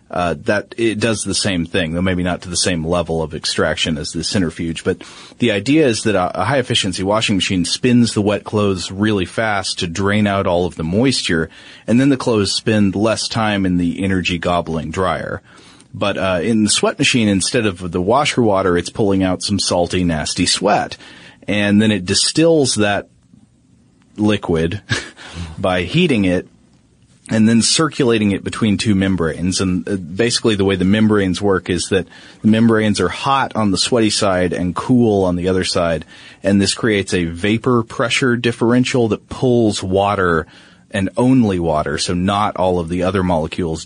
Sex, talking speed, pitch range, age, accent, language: male, 180 wpm, 90-110 Hz, 30-49, American, English